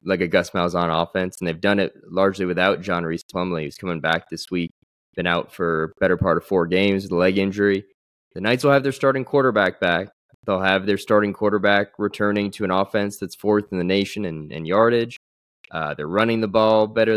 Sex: male